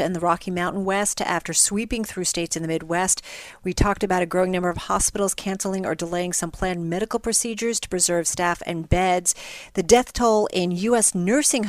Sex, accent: female, American